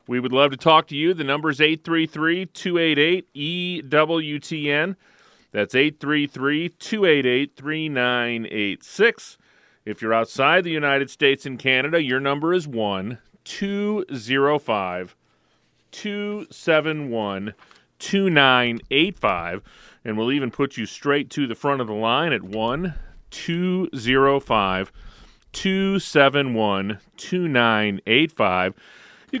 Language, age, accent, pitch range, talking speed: English, 40-59, American, 115-165 Hz, 80 wpm